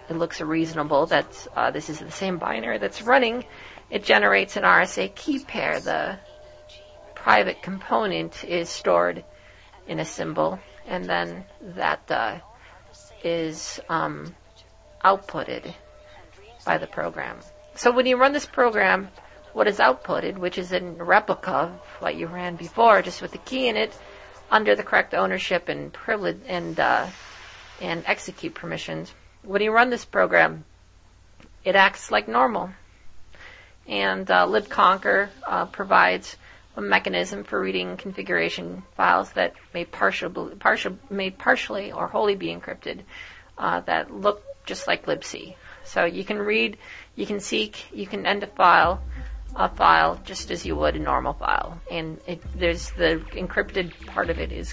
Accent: American